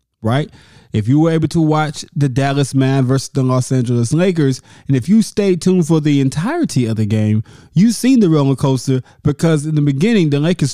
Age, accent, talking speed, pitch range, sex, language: 20-39, American, 205 wpm, 120-160 Hz, male, English